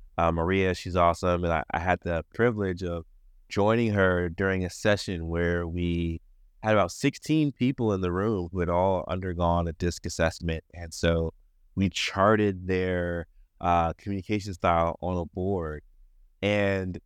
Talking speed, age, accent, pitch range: 155 wpm, 30-49, American, 85-110 Hz